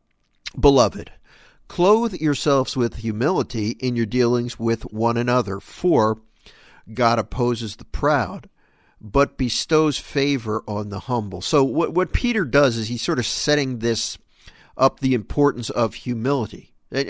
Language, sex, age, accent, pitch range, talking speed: English, male, 50-69, American, 115-145 Hz, 135 wpm